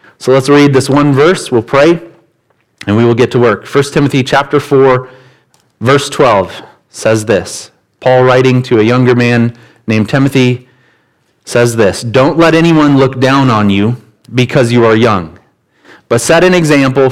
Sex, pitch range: male, 110-135 Hz